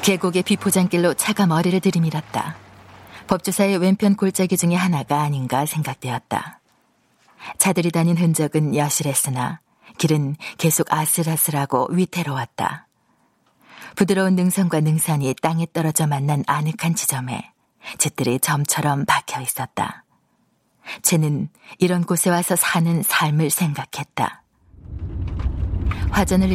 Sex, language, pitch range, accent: female, Korean, 145-190 Hz, native